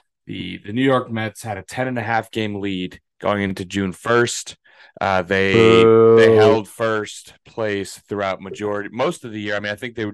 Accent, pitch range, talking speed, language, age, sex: American, 100-120 Hz, 200 wpm, English, 30-49, male